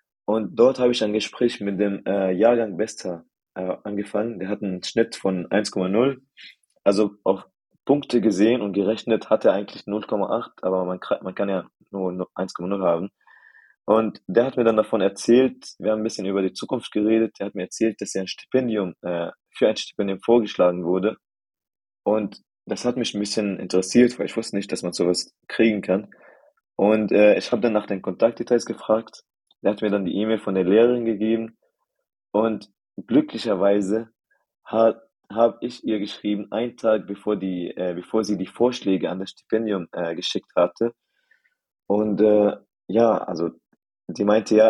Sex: male